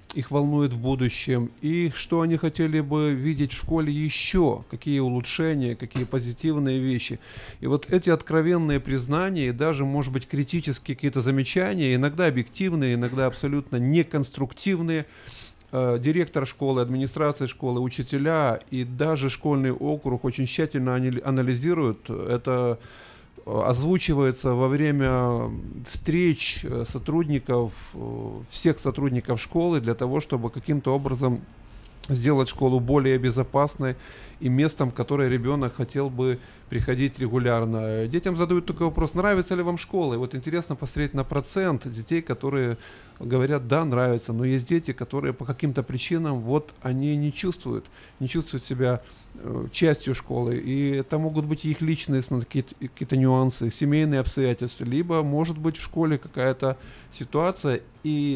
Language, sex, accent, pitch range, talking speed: Russian, male, native, 125-155 Hz, 130 wpm